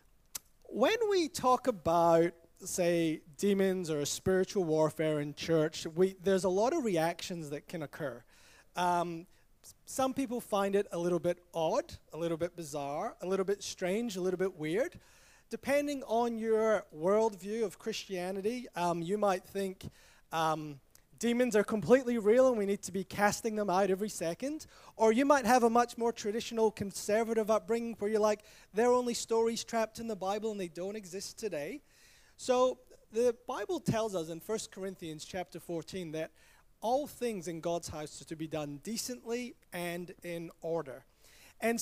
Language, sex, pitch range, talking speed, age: English, male, 170-225 Hz, 165 wpm, 30-49